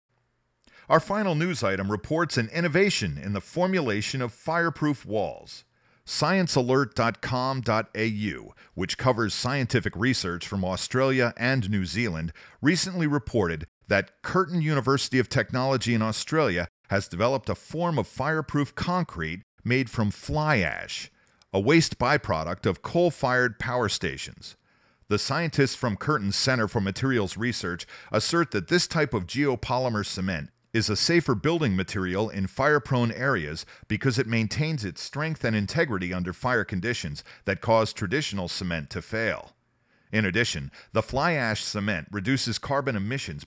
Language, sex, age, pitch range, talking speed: English, male, 40-59, 100-135 Hz, 135 wpm